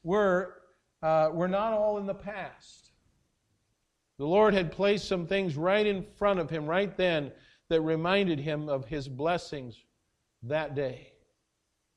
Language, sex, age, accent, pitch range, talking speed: English, male, 50-69, American, 145-180 Hz, 145 wpm